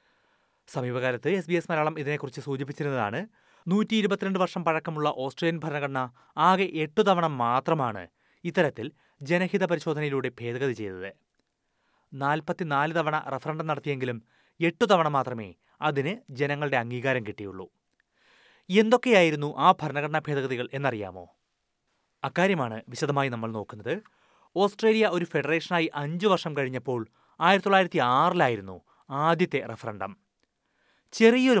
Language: Malayalam